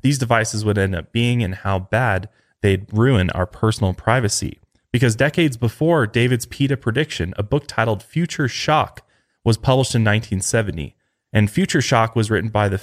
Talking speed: 170 wpm